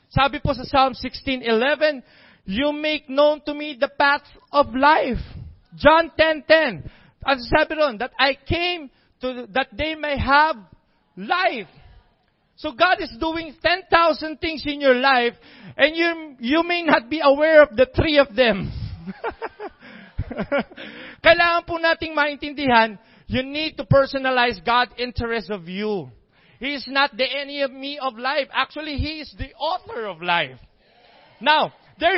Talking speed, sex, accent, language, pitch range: 140 wpm, male, Filipino, English, 220-300 Hz